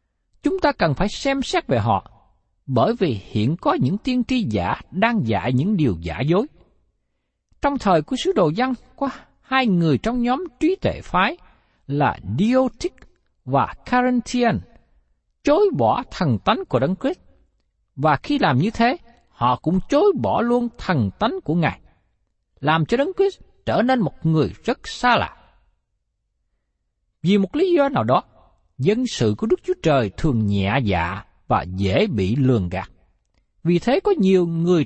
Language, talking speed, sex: Vietnamese, 165 wpm, male